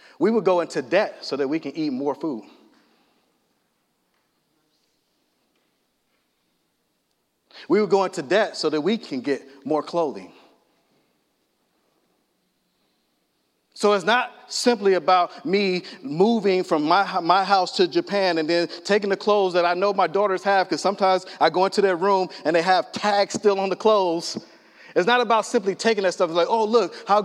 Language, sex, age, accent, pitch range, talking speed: English, male, 30-49, American, 170-205 Hz, 165 wpm